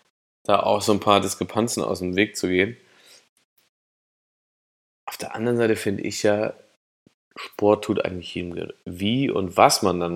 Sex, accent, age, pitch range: male, German, 20-39, 95-110 Hz